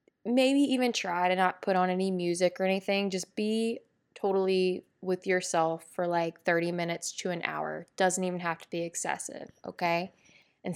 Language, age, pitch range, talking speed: English, 20-39, 175-205 Hz, 175 wpm